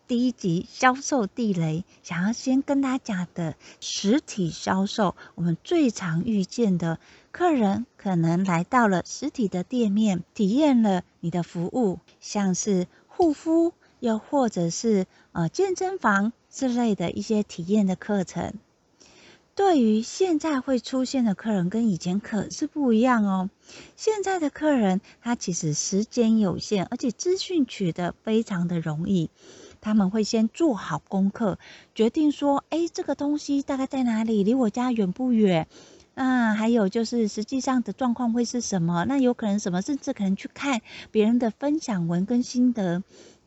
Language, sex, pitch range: Chinese, female, 185-260 Hz